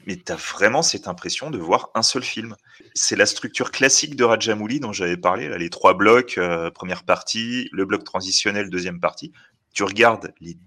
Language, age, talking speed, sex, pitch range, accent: French, 30-49, 195 wpm, male, 95-120 Hz, French